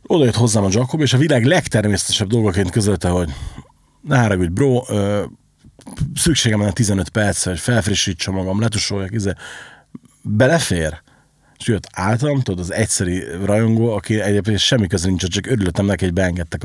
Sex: male